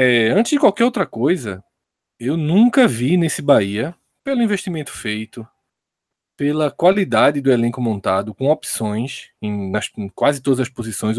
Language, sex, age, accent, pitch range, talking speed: Portuguese, male, 20-39, Brazilian, 115-190 Hz, 150 wpm